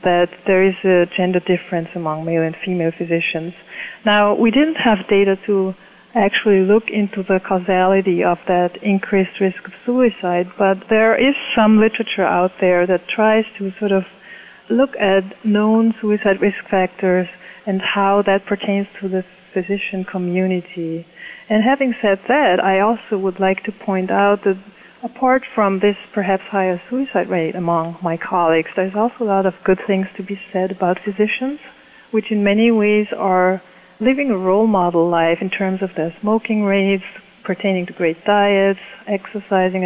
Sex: female